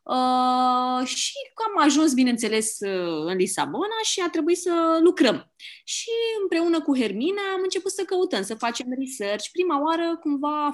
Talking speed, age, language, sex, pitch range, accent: 150 wpm, 20-39, Romanian, female, 195-255 Hz, native